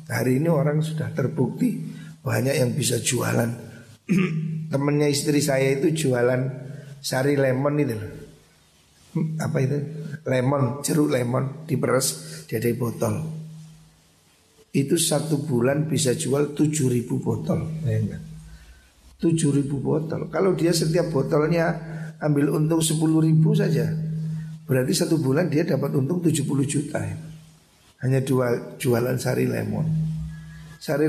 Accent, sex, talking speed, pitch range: native, male, 110 wpm, 130-160 Hz